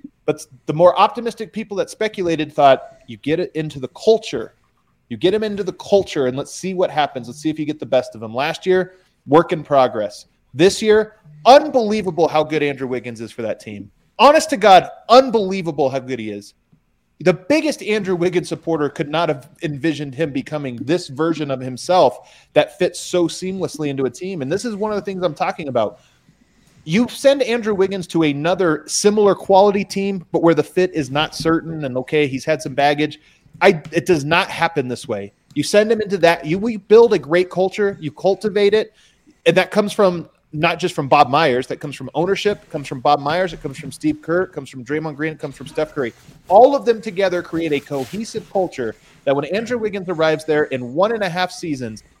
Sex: male